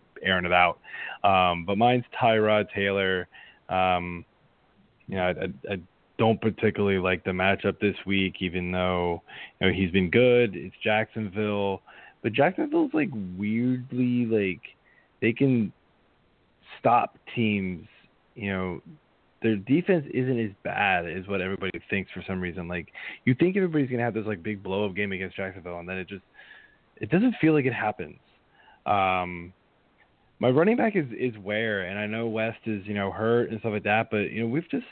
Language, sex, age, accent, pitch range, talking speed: English, male, 20-39, American, 95-115 Hz, 175 wpm